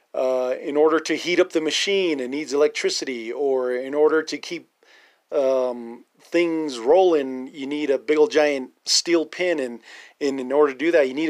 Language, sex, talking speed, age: English, male, 190 wpm, 40-59